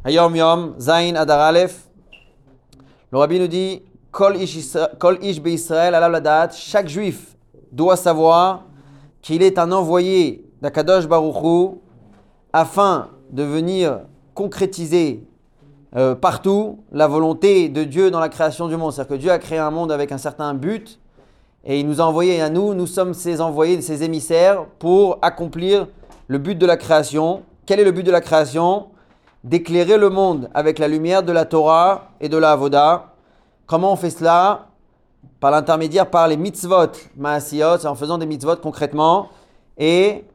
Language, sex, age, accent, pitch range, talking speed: French, male, 30-49, French, 155-180 Hz, 145 wpm